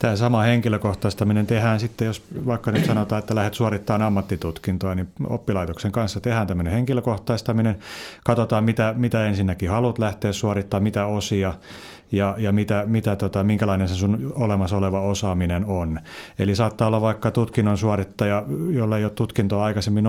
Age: 30-49